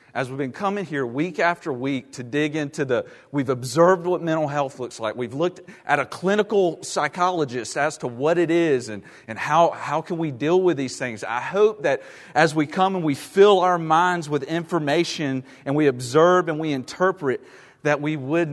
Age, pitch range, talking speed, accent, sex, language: 40-59, 135-170 Hz, 200 wpm, American, male, English